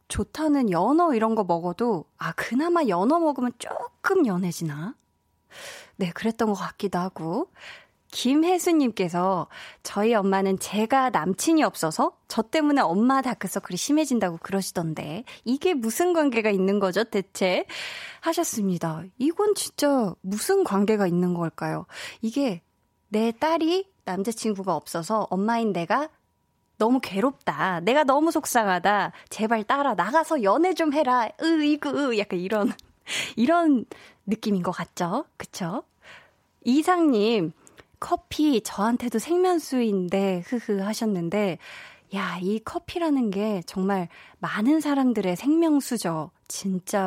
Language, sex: Korean, female